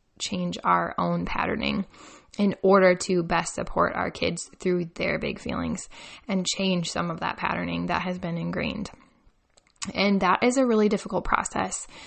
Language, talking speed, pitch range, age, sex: English, 160 wpm, 185-220 Hz, 10-29, female